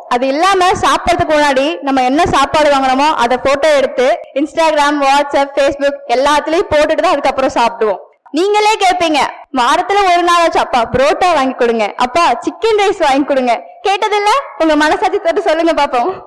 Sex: female